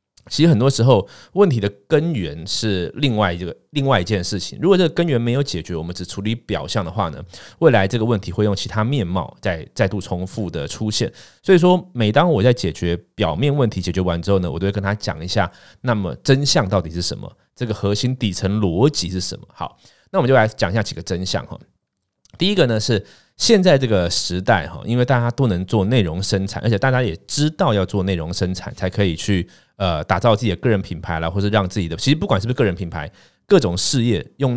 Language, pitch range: Chinese, 90-125 Hz